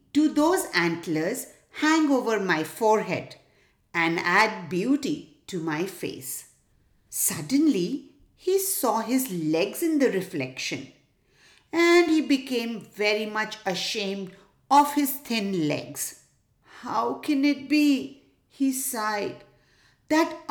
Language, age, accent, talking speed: English, 50-69, Indian, 110 wpm